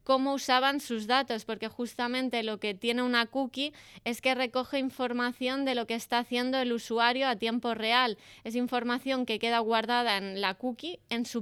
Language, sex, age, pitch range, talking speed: Spanish, female, 20-39, 225-255 Hz, 185 wpm